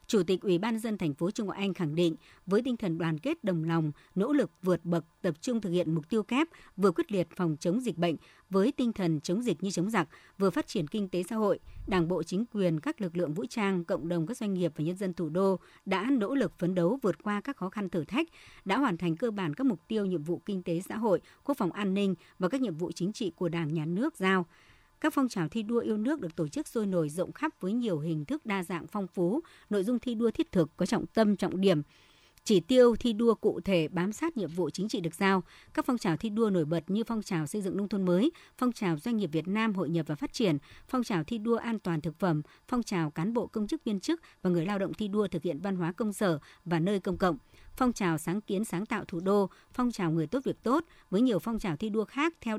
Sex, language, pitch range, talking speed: male, Vietnamese, 170-225 Hz, 275 wpm